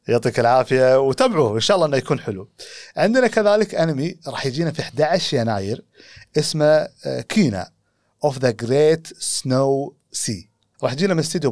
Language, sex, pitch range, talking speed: Arabic, male, 115-160 Hz, 145 wpm